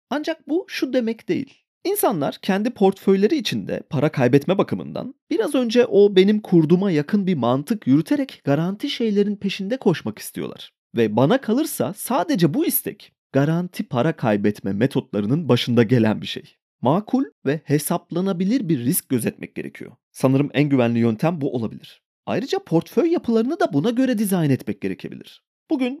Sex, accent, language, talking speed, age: male, native, Turkish, 145 wpm, 30-49